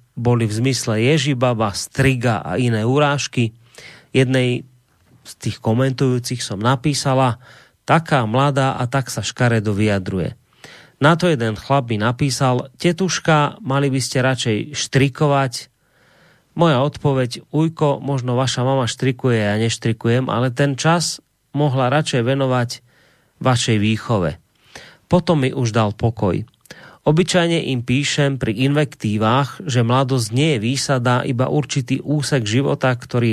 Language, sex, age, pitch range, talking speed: Slovak, male, 30-49, 120-140 Hz, 125 wpm